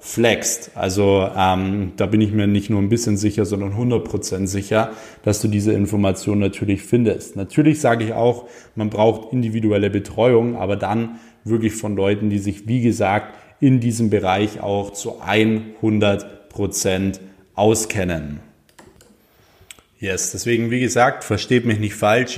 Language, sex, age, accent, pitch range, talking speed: German, male, 20-39, German, 100-115 Hz, 140 wpm